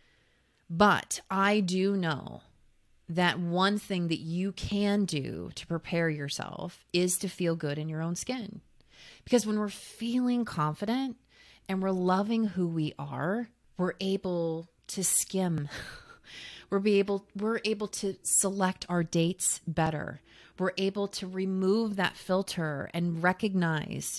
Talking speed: 130 wpm